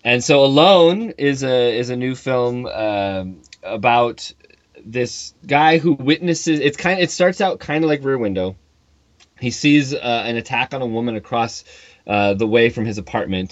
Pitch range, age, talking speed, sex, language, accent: 100-140 Hz, 20-39, 180 wpm, male, English, American